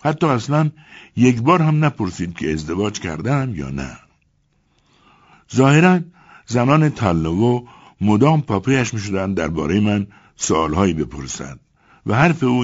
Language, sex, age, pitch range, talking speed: Persian, male, 60-79, 90-140 Hz, 120 wpm